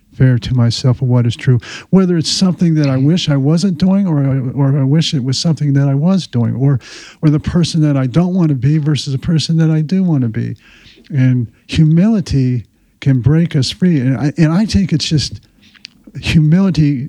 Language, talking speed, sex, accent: English, 215 wpm, male, American